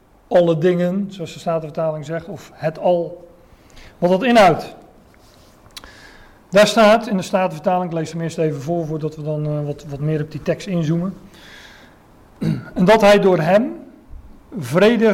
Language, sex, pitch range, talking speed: Dutch, male, 155-195 Hz, 165 wpm